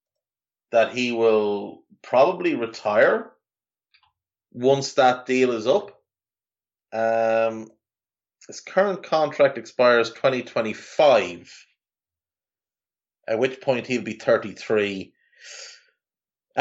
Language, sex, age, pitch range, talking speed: English, male, 30-49, 100-140 Hz, 80 wpm